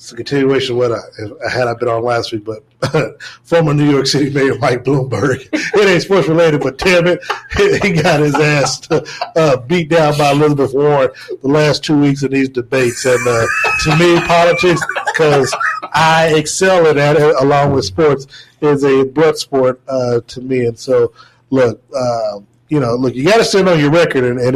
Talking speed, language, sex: 195 wpm, English, male